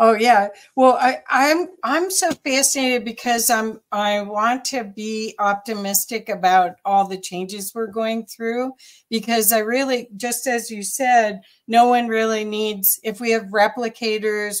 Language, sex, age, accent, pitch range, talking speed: English, female, 60-79, American, 190-230 Hz, 150 wpm